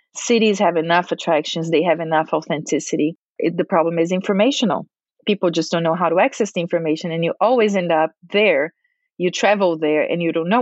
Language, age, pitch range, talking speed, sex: English, 30-49, 165-200 Hz, 190 wpm, female